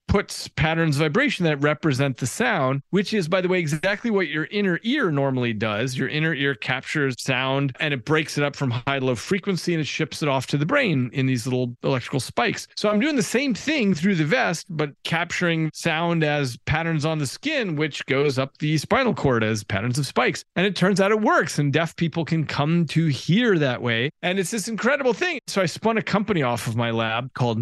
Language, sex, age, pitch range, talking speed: English, male, 30-49, 130-170 Hz, 230 wpm